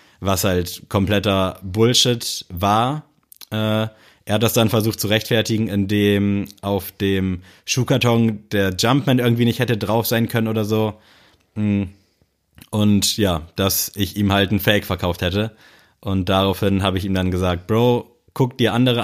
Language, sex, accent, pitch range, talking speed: German, male, German, 100-115 Hz, 150 wpm